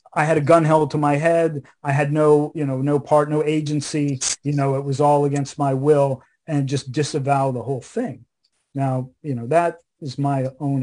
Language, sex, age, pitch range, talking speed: English, male, 40-59, 135-160 Hz, 210 wpm